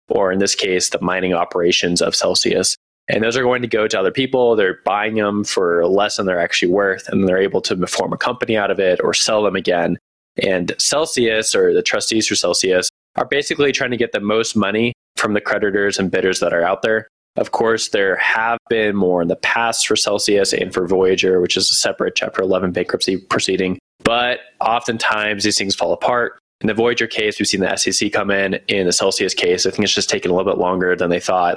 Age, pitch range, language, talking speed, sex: 20-39, 95-110 Hz, English, 225 wpm, male